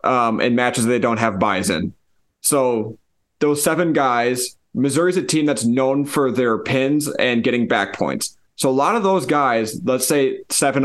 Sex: male